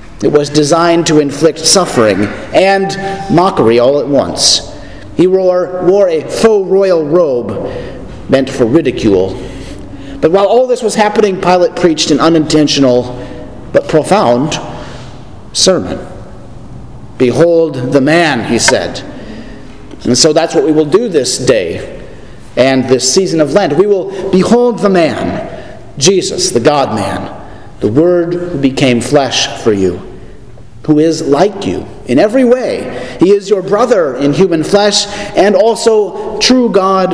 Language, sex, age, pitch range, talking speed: English, male, 50-69, 135-190 Hz, 135 wpm